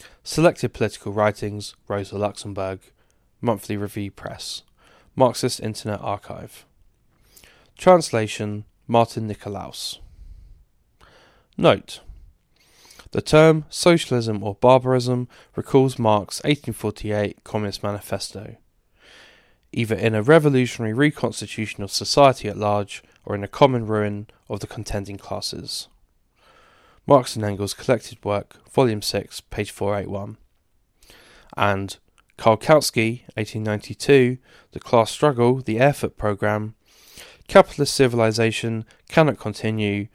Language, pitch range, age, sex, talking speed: English, 100-125 Hz, 10-29, male, 105 wpm